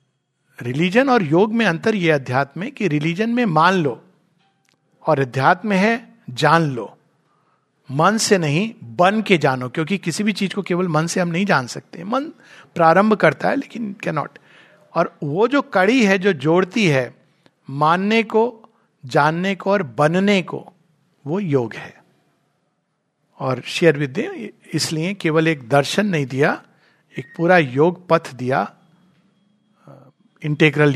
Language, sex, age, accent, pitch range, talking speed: Hindi, male, 50-69, native, 150-195 Hz, 145 wpm